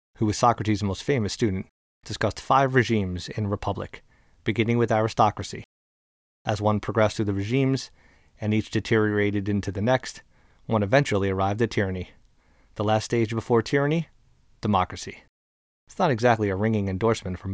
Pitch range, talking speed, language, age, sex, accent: 100-115 Hz, 150 wpm, English, 30-49, male, American